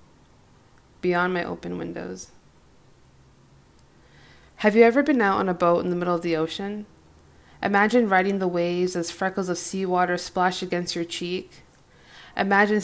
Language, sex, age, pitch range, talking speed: English, female, 20-39, 165-185 Hz, 145 wpm